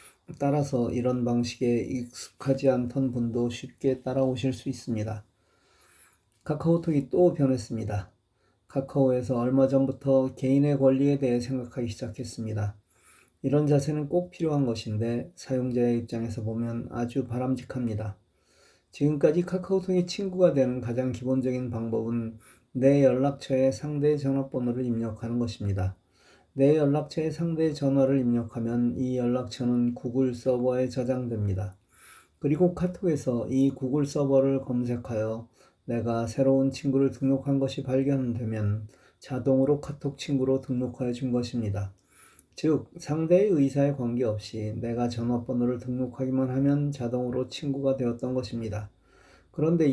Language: Korean